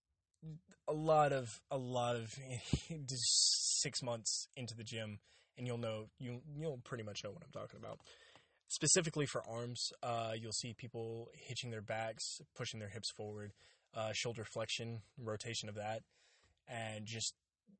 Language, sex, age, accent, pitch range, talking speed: English, male, 20-39, American, 110-130 Hz, 155 wpm